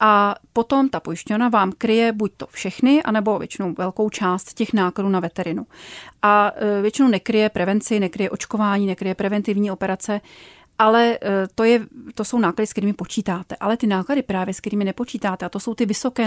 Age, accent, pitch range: 30-49, native, 195-230 Hz